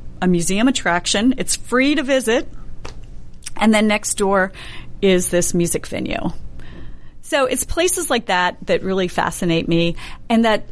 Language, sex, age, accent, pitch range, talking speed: English, female, 40-59, American, 170-230 Hz, 145 wpm